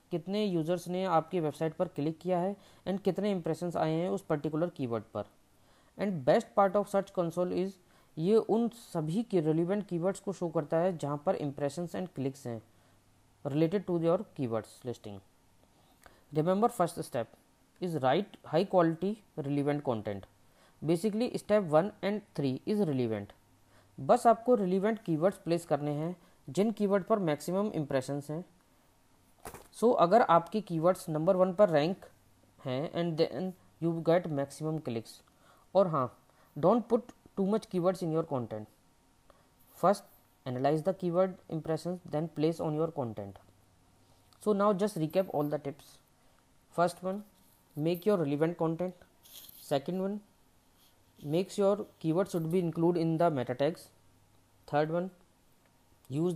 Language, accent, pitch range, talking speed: Hindi, native, 135-190 Hz, 145 wpm